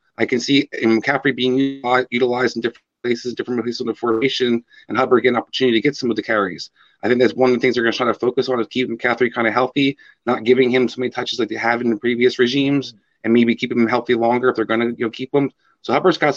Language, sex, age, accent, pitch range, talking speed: English, male, 30-49, American, 120-140 Hz, 275 wpm